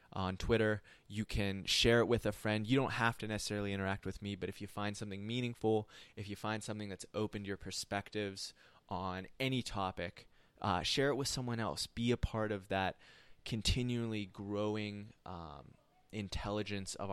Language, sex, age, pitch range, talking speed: English, male, 20-39, 95-110 Hz, 175 wpm